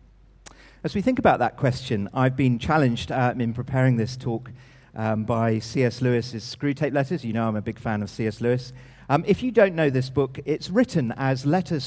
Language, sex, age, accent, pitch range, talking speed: English, male, 40-59, British, 115-145 Hz, 200 wpm